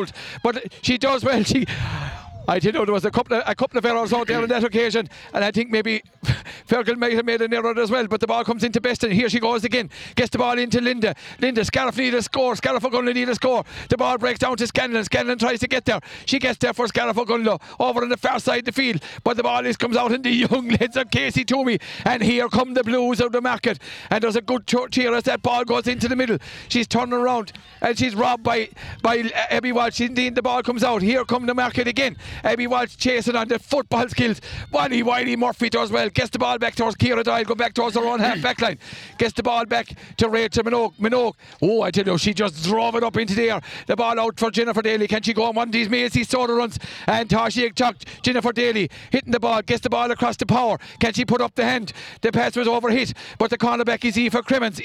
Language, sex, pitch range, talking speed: English, male, 230-245 Hz, 255 wpm